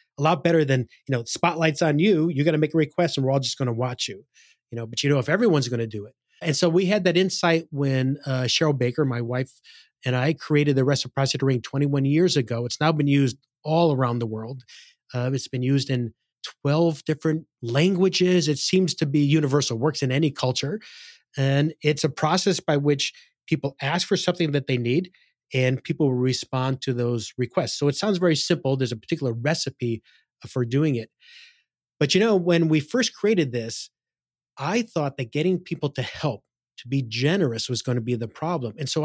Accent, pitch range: American, 130-165 Hz